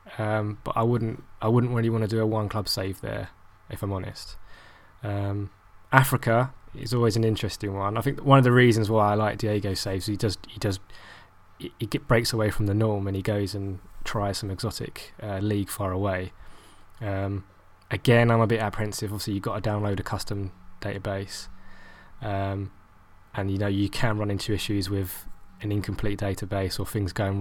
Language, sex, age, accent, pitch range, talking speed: English, male, 20-39, British, 95-110 Hz, 195 wpm